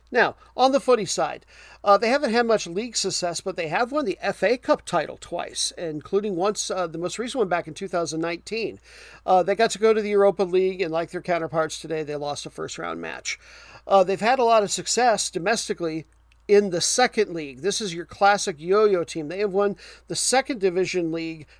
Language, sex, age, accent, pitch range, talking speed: English, male, 50-69, American, 165-210 Hz, 215 wpm